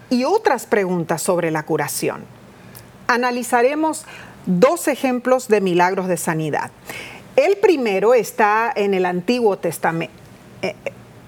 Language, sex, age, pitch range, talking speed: Spanish, female, 40-59, 195-300 Hz, 110 wpm